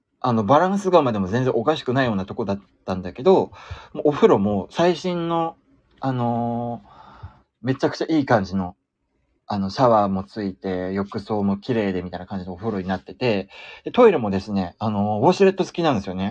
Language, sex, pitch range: Japanese, male, 95-135 Hz